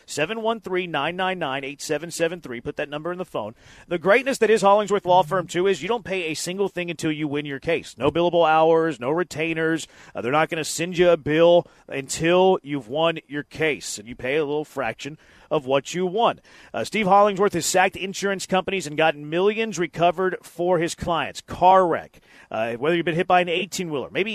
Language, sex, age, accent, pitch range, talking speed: English, male, 40-59, American, 155-185 Hz, 200 wpm